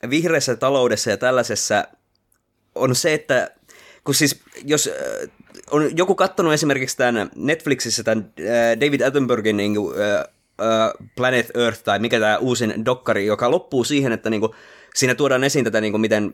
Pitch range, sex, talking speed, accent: 105-125 Hz, male, 145 wpm, native